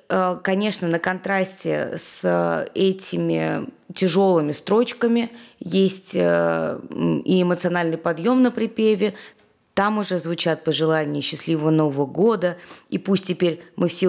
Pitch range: 165-205 Hz